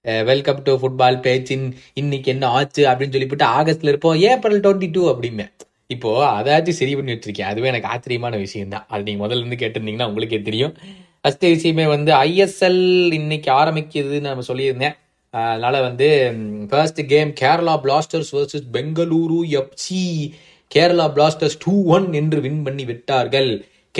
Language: Tamil